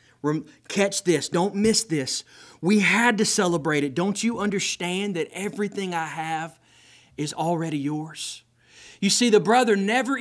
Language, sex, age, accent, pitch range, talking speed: English, male, 30-49, American, 175-235 Hz, 145 wpm